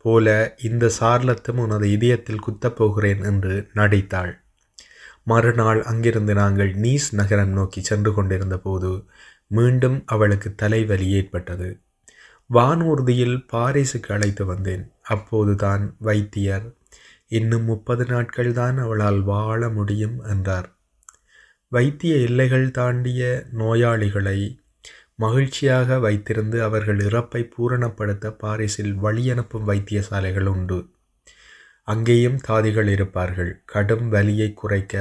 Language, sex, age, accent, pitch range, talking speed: Tamil, male, 20-39, native, 100-120 Hz, 95 wpm